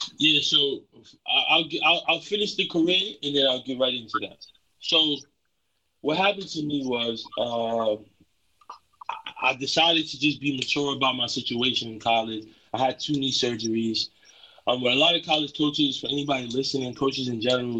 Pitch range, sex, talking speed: 115-145 Hz, male, 190 wpm